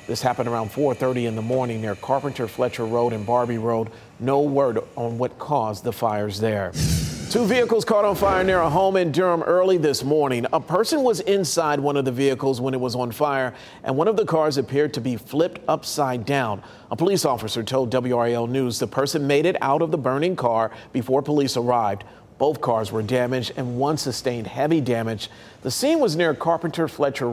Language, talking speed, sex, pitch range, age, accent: English, 200 wpm, male, 120-145 Hz, 40-59, American